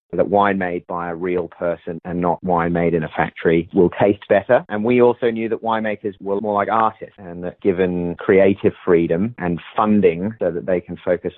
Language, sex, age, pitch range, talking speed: English, male, 30-49, 85-95 Hz, 205 wpm